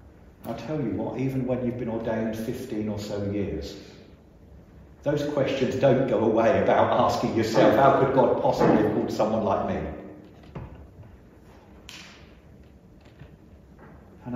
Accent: British